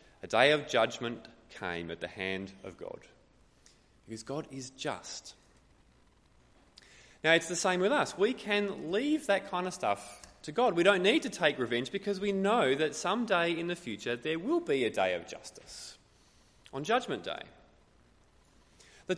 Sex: male